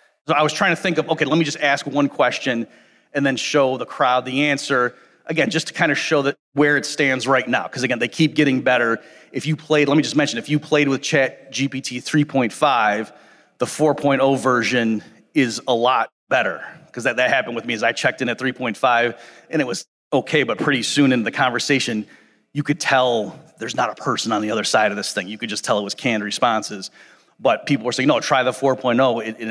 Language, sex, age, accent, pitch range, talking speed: English, male, 30-49, American, 130-150 Hz, 230 wpm